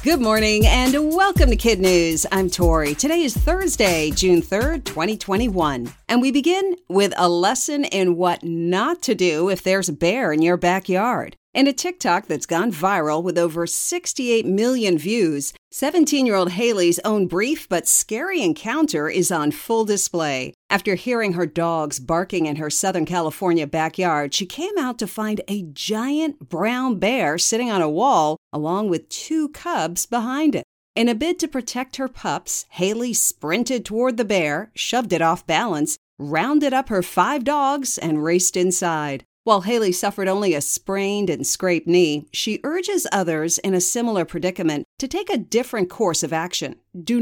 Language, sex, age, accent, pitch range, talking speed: English, female, 50-69, American, 170-245 Hz, 170 wpm